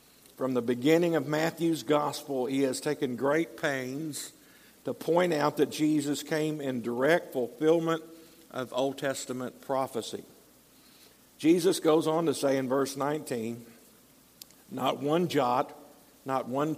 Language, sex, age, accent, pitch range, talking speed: English, male, 50-69, American, 135-160 Hz, 130 wpm